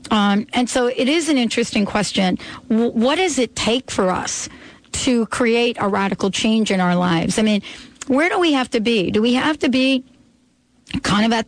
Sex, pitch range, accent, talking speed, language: female, 200-250 Hz, American, 200 wpm, English